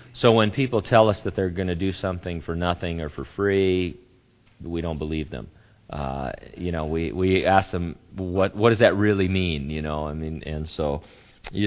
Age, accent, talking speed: 40-59, American, 205 wpm